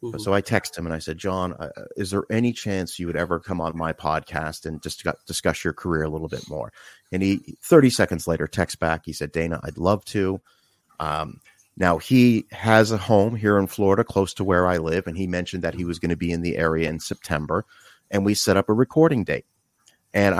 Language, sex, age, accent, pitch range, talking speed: Dutch, male, 30-49, American, 85-120 Hz, 230 wpm